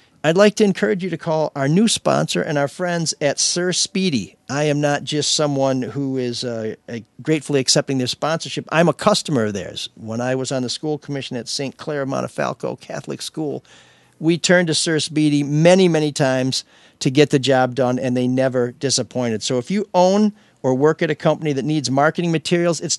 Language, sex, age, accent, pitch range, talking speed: English, male, 50-69, American, 135-175 Hz, 205 wpm